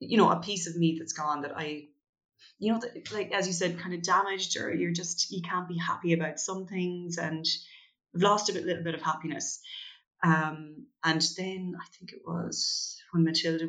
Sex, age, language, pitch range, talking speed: female, 30-49, English, 150-180 Hz, 200 wpm